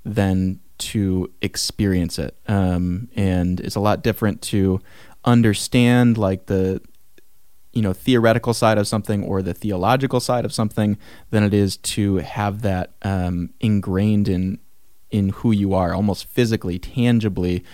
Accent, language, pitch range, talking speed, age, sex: American, English, 95-110 Hz, 140 wpm, 20-39, male